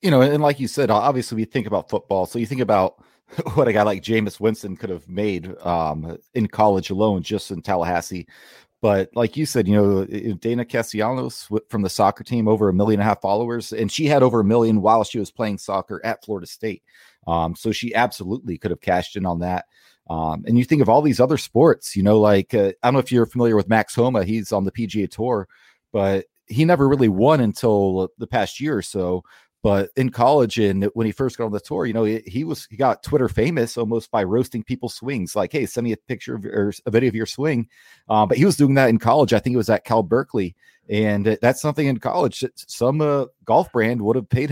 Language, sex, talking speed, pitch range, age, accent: English, male, 240 wpm, 100-125 Hz, 30-49, American